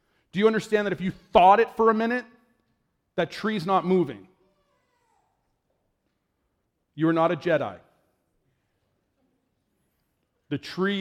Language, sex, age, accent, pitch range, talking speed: English, male, 40-59, American, 150-195 Hz, 120 wpm